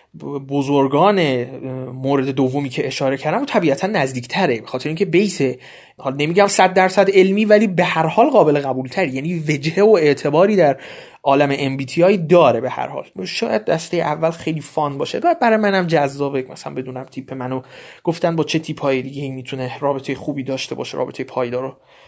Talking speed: 175 wpm